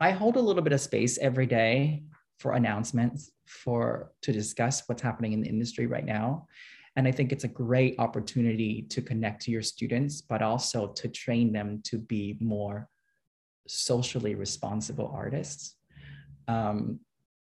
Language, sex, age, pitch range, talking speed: English, male, 20-39, 110-130 Hz, 155 wpm